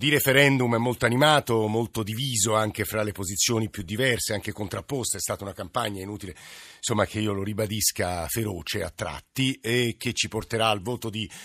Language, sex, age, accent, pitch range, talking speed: Italian, male, 50-69, native, 110-135 Hz, 185 wpm